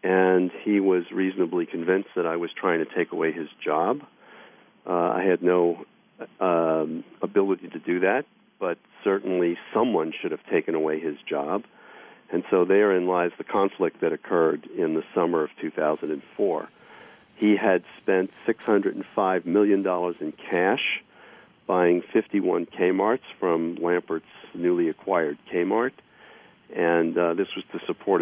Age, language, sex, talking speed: 50-69, English, male, 140 wpm